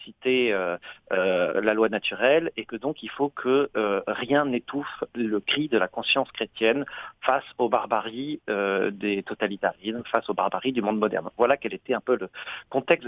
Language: French